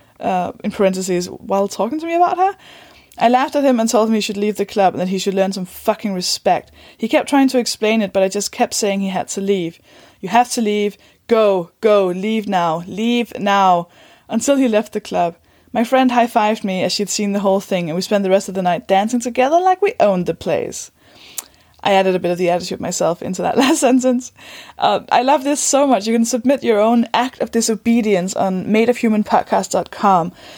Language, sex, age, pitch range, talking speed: English, female, 20-39, 195-255 Hz, 220 wpm